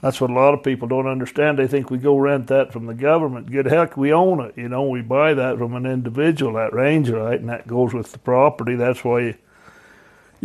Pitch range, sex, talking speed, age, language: 125-145 Hz, male, 240 wpm, 60-79, English